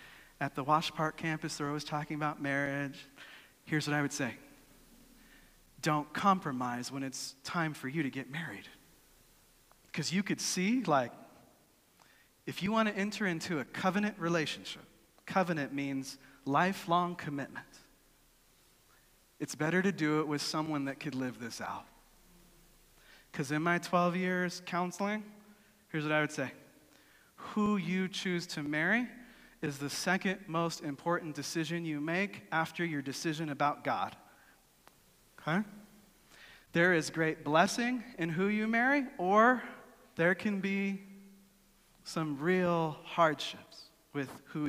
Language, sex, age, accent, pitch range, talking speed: English, male, 40-59, American, 145-185 Hz, 135 wpm